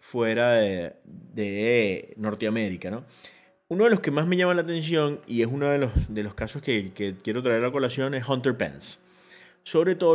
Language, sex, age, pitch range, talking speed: English, male, 30-49, 110-165 Hz, 200 wpm